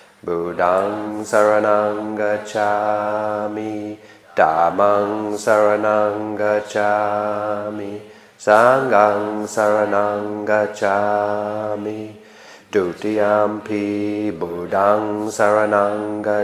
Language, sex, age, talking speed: English, male, 40-59, 45 wpm